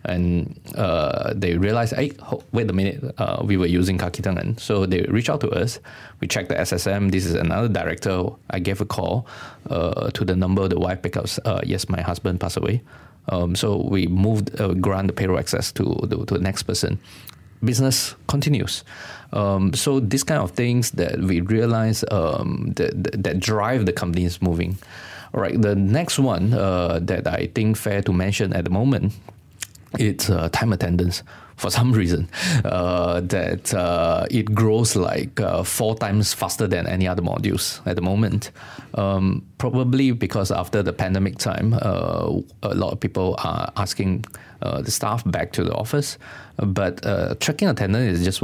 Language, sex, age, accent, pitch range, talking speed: English, male, 20-39, Malaysian, 90-115 Hz, 180 wpm